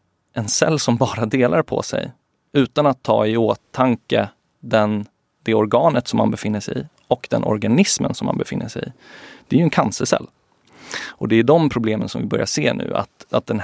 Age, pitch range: 30-49, 110-135 Hz